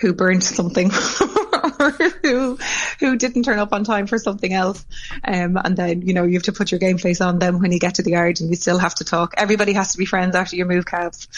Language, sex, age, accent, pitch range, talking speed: English, female, 20-39, Irish, 170-195 Hz, 260 wpm